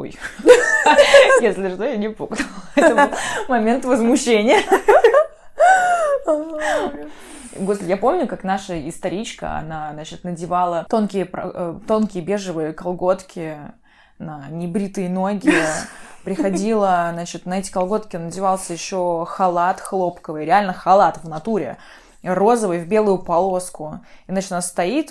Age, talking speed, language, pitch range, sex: 20-39, 110 wpm, Russian, 180-280 Hz, female